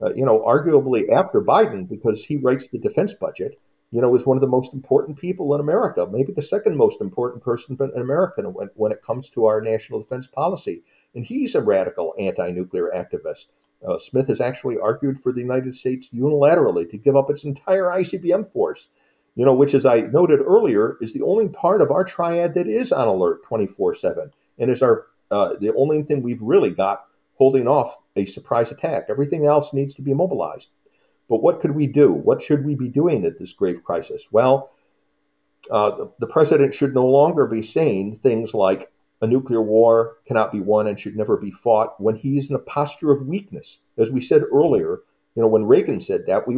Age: 50-69